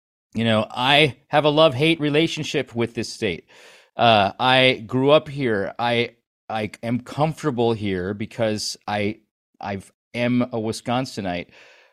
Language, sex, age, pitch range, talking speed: English, male, 40-59, 115-150 Hz, 125 wpm